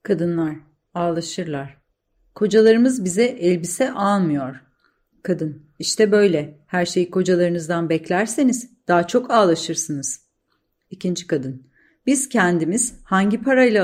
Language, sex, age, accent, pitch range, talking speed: Turkish, female, 40-59, native, 155-215 Hz, 95 wpm